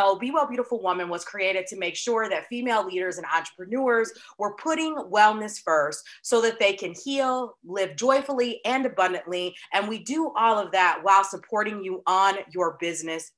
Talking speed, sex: 175 wpm, female